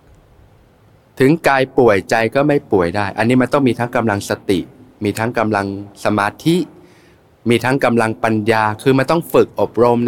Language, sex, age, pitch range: Thai, male, 20-39, 105-130 Hz